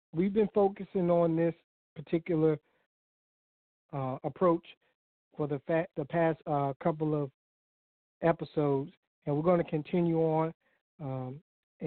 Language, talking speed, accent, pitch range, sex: English, 120 wpm, American, 145-165 Hz, male